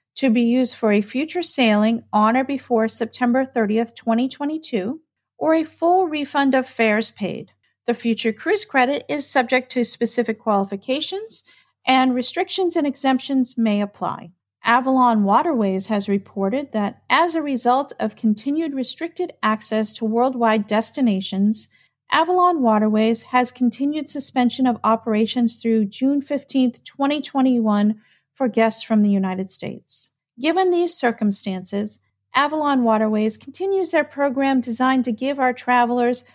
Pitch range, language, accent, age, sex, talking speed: 220-280 Hz, English, American, 50-69, female, 130 wpm